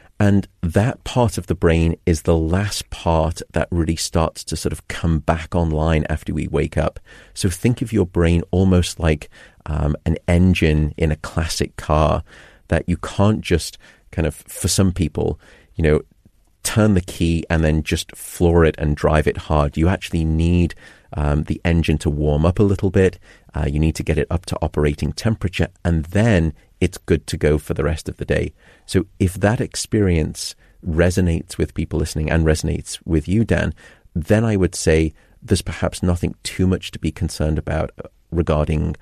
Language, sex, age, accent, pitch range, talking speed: English, male, 40-59, British, 80-95 Hz, 185 wpm